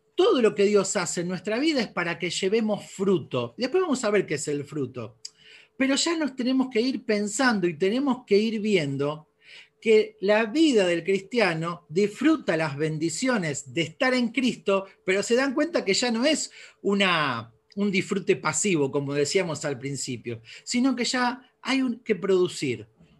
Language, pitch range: Spanish, 150-220 Hz